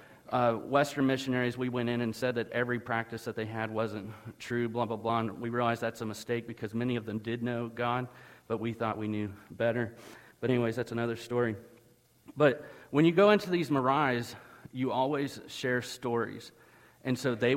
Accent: American